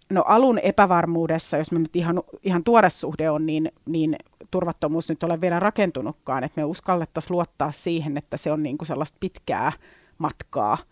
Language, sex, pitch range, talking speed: Finnish, female, 155-185 Hz, 165 wpm